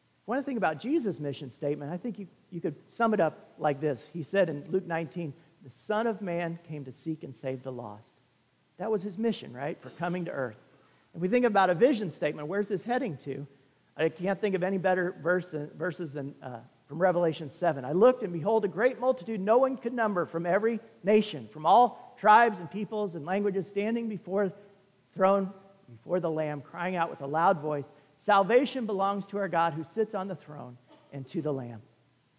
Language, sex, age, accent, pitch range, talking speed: English, male, 40-59, American, 155-210 Hz, 210 wpm